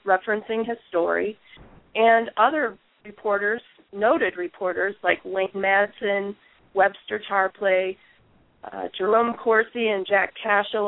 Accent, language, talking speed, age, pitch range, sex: American, English, 105 wpm, 30-49, 195-235 Hz, female